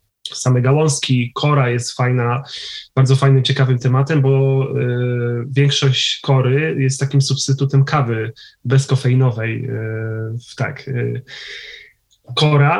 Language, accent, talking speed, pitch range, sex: Polish, native, 85 wpm, 125-140 Hz, male